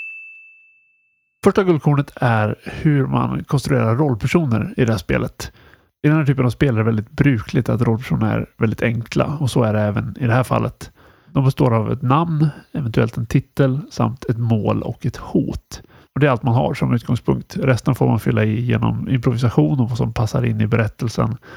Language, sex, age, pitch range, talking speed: Swedish, male, 30-49, 110-145 Hz, 200 wpm